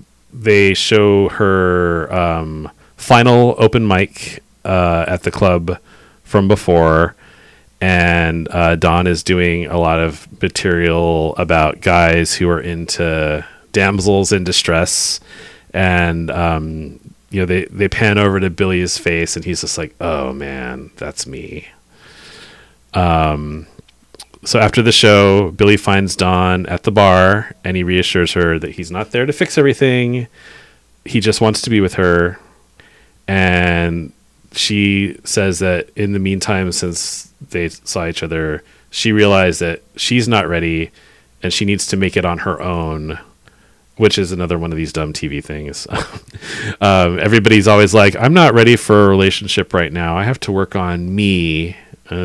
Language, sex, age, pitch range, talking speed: English, male, 30-49, 85-100 Hz, 155 wpm